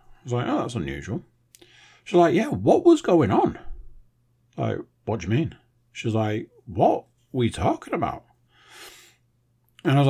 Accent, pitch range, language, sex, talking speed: British, 115-145 Hz, English, male, 165 wpm